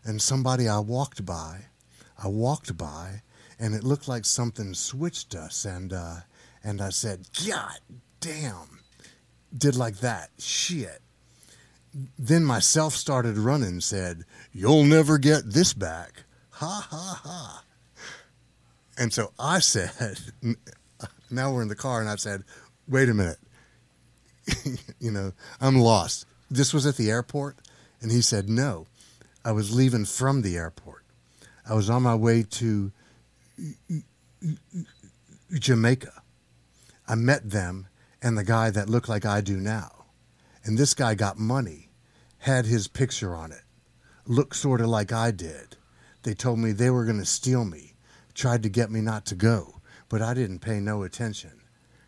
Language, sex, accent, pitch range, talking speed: English, male, American, 95-130 Hz, 150 wpm